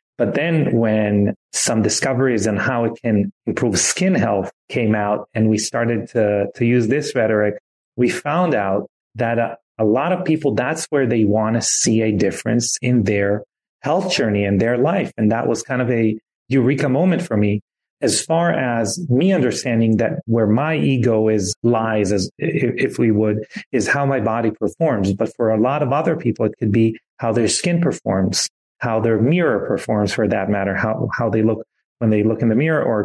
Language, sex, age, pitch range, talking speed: English, male, 30-49, 105-125 Hz, 195 wpm